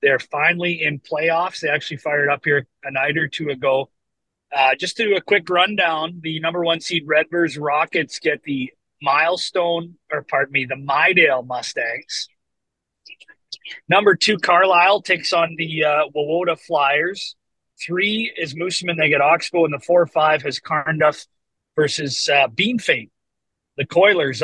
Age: 40-59